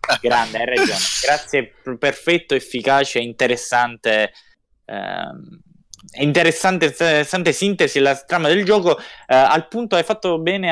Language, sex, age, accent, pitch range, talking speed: Italian, male, 20-39, native, 110-155 Hz, 125 wpm